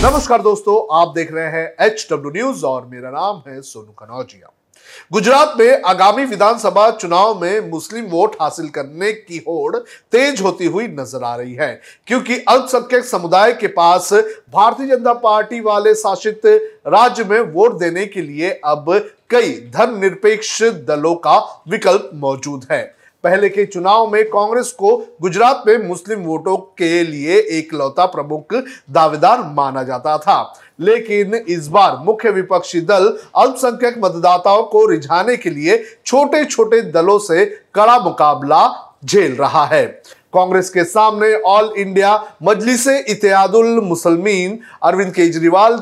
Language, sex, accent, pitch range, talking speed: Hindi, male, native, 170-230 Hz, 140 wpm